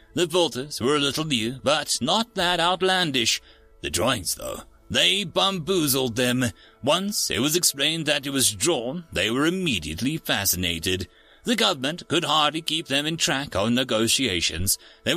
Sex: male